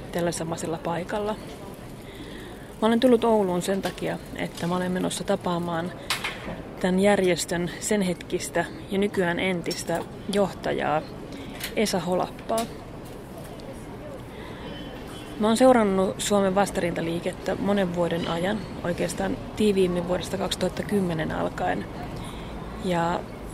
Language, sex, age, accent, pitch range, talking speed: Finnish, female, 30-49, native, 175-200 Hz, 95 wpm